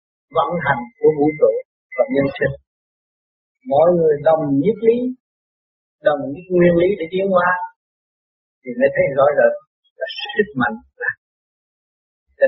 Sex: male